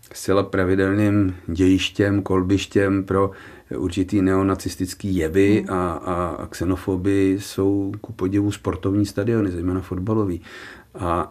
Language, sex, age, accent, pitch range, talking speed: Czech, male, 40-59, native, 95-105 Hz, 100 wpm